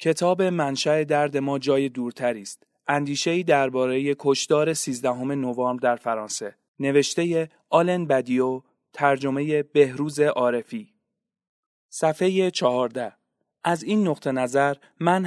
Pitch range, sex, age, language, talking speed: 135-170 Hz, male, 30-49, Persian, 110 wpm